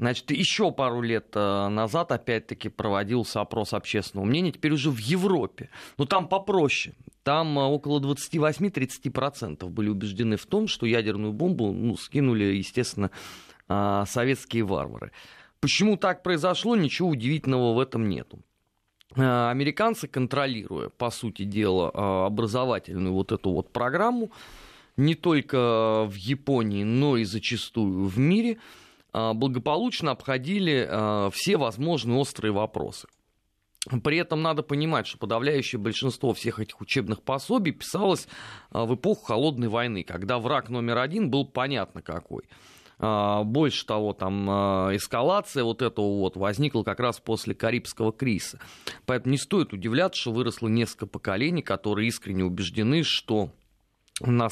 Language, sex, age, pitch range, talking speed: Russian, male, 30-49, 105-140 Hz, 125 wpm